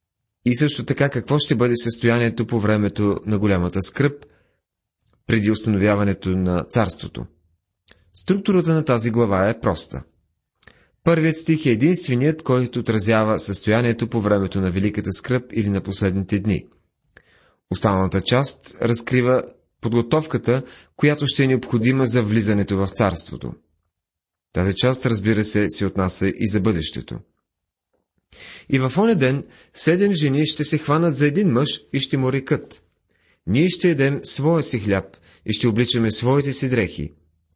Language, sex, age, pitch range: Bulgarian, male, 30-49, 95-135 Hz